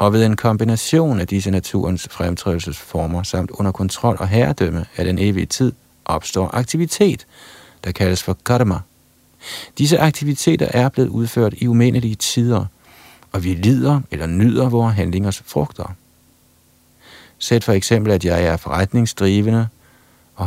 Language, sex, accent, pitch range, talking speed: Danish, male, native, 85-120 Hz, 140 wpm